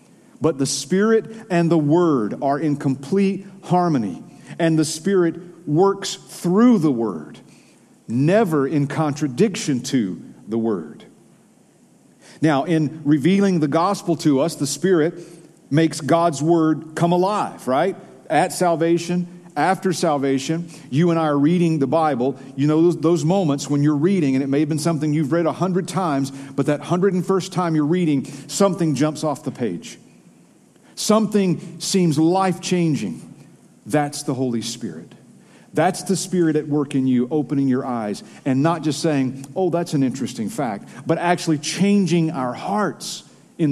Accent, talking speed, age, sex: American, 155 wpm, 50-69, male